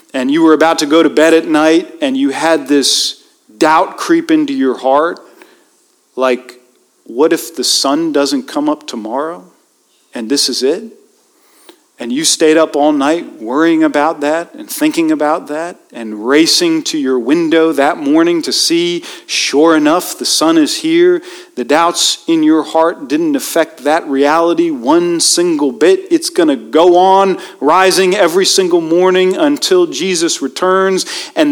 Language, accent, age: English, American, 40-59